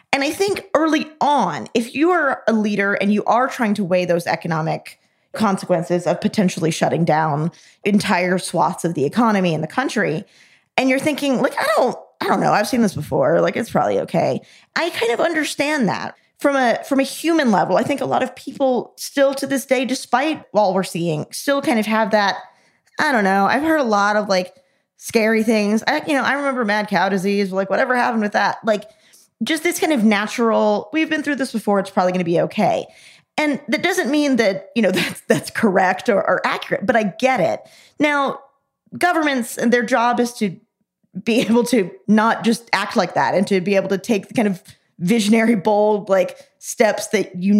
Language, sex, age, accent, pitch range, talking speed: English, female, 20-39, American, 190-260 Hz, 210 wpm